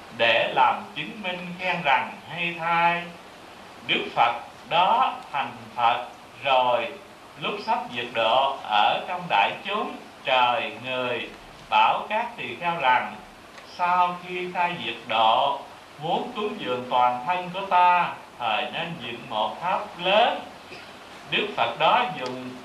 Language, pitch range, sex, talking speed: Vietnamese, 160-180 Hz, male, 135 wpm